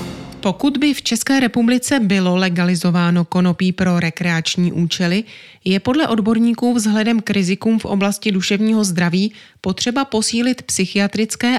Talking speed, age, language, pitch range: 125 wpm, 30-49, Czech, 175-220 Hz